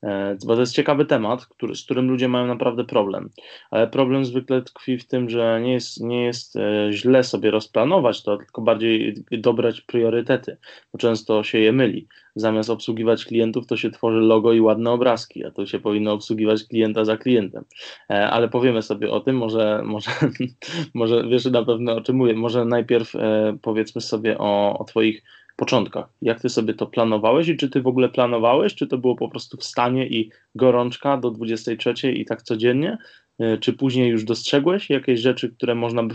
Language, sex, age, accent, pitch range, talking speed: Polish, male, 20-39, native, 110-125 Hz, 180 wpm